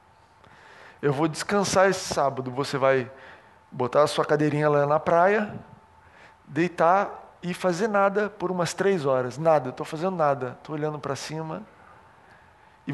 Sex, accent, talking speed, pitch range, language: male, Brazilian, 150 wpm, 150-185 Hz, Portuguese